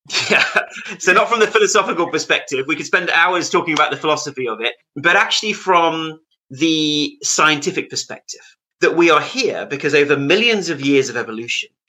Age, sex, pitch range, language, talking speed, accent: 30-49, male, 130-180 Hz, English, 170 wpm, British